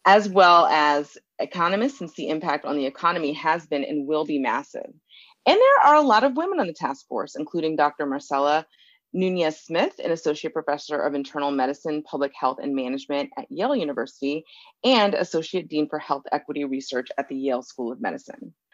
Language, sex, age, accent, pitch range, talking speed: English, female, 30-49, American, 140-185 Hz, 185 wpm